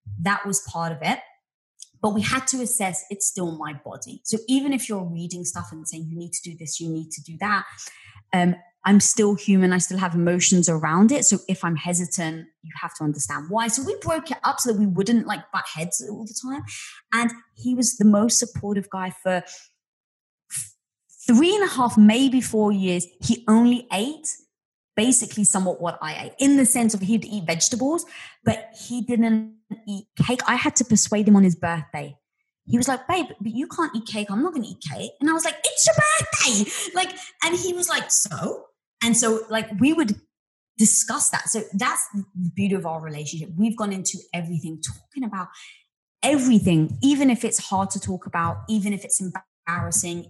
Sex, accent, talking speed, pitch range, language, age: female, British, 200 wpm, 175-235 Hz, English, 20-39